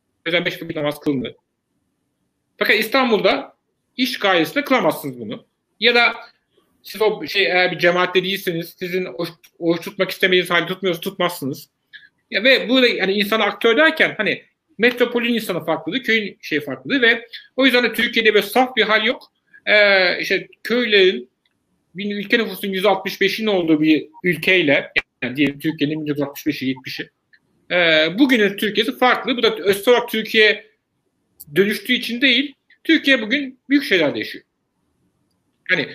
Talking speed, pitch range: 130 wpm, 180-240 Hz